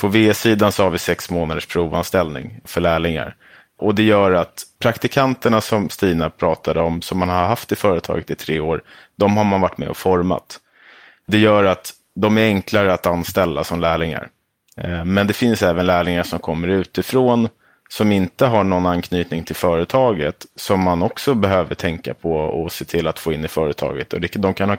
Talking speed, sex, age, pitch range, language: 190 wpm, male, 30-49, 85-100 Hz, Swedish